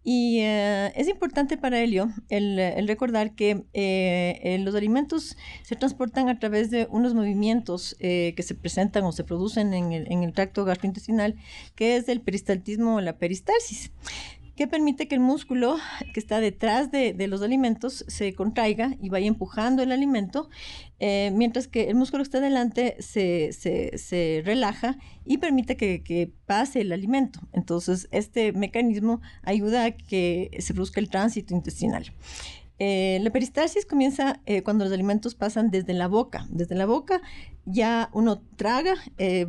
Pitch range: 190-245 Hz